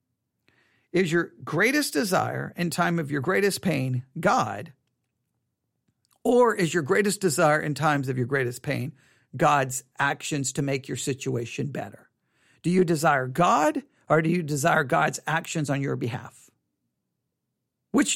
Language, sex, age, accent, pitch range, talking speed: English, male, 50-69, American, 135-185 Hz, 140 wpm